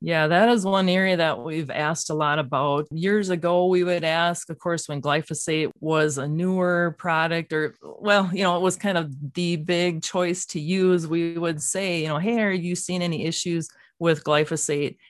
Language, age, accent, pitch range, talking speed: English, 30-49, American, 150-175 Hz, 200 wpm